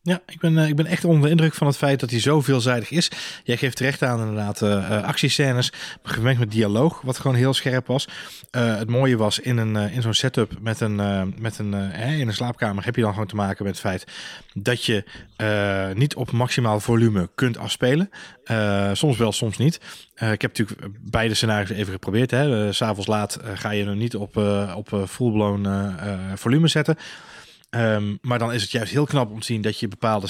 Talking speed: 200 wpm